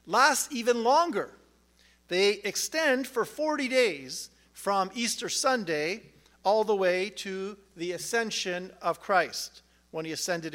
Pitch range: 170-225 Hz